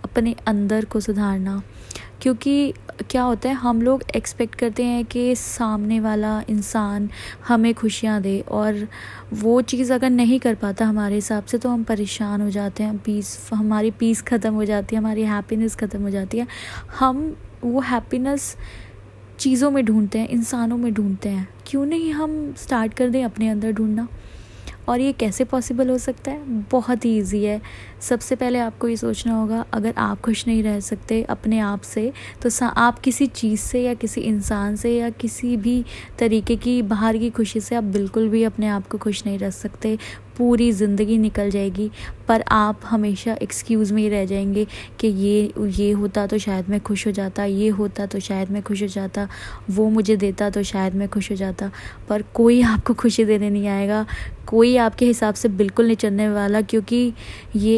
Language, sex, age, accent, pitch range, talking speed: Hindi, female, 20-39, native, 205-235 Hz, 185 wpm